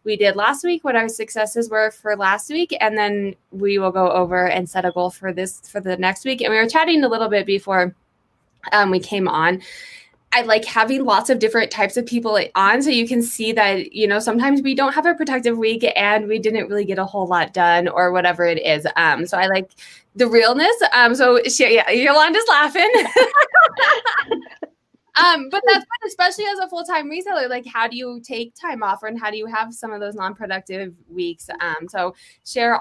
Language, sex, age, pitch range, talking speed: English, female, 20-39, 185-240 Hz, 215 wpm